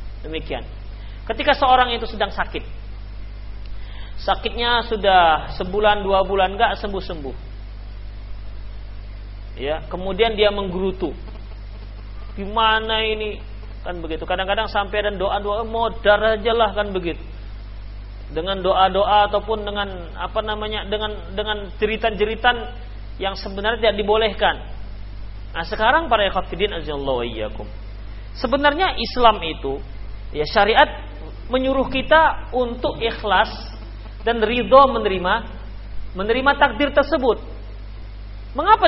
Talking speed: 115 wpm